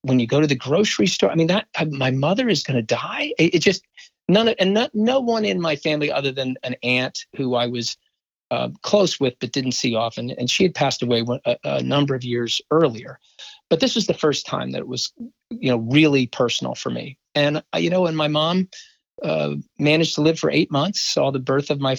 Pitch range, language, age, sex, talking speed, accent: 125-160 Hz, English, 40-59, male, 230 wpm, American